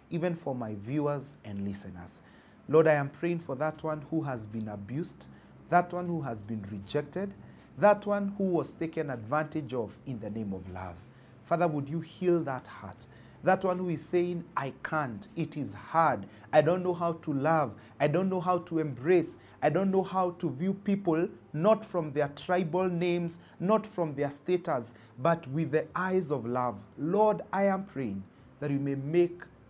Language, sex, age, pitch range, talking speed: English, male, 40-59, 120-180 Hz, 190 wpm